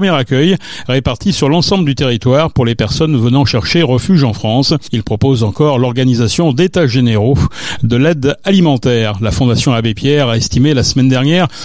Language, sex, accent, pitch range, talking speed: French, male, French, 125-170 Hz, 175 wpm